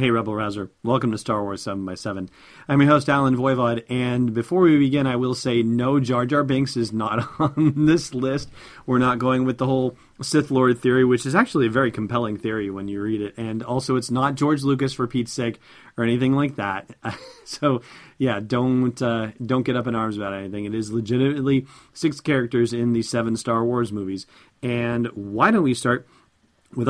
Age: 40-59